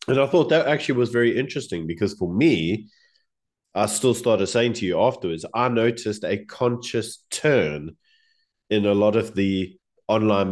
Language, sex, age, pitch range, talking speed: English, male, 20-39, 90-120 Hz, 165 wpm